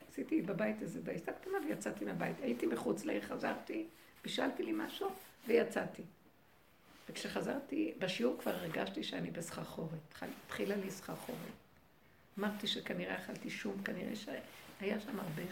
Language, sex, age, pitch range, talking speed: Hebrew, female, 60-79, 195-245 Hz, 125 wpm